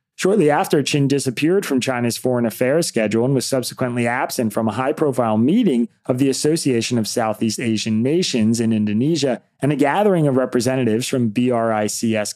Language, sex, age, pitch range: English, male, 30-49, 110-150 Hz